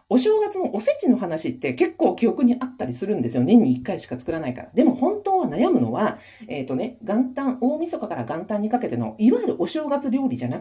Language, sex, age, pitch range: Japanese, female, 40-59, 180-270 Hz